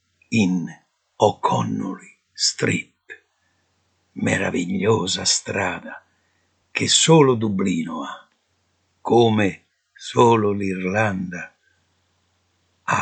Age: 60-79